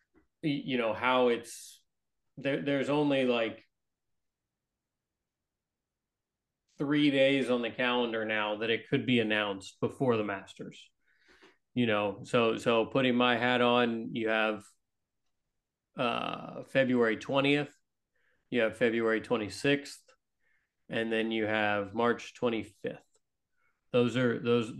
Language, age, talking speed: English, 30-49, 115 wpm